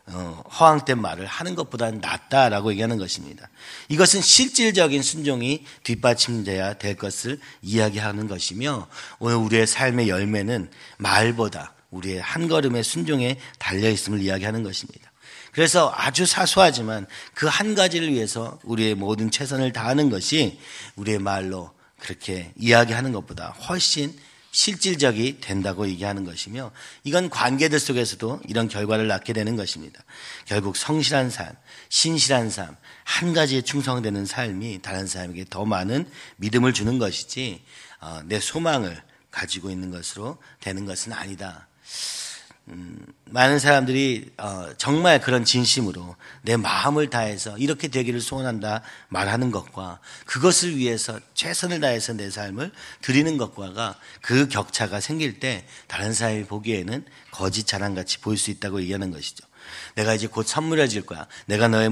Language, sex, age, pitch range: Korean, male, 40-59, 100-140 Hz